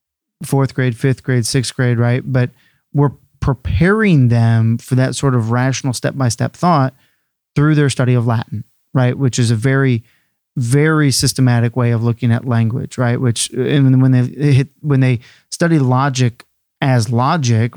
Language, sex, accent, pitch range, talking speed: English, male, American, 120-140 Hz, 160 wpm